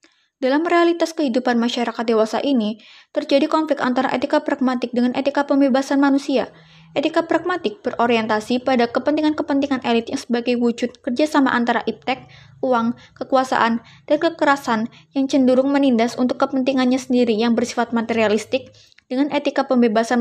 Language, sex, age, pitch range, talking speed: Indonesian, female, 20-39, 230-275 Hz, 130 wpm